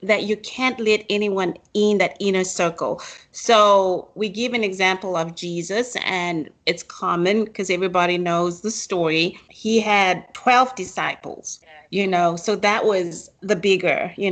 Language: English